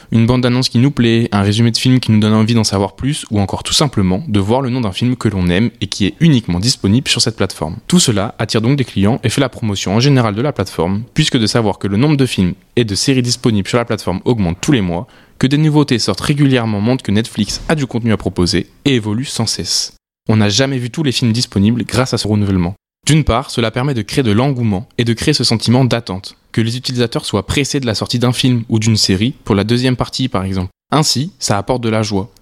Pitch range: 105-130 Hz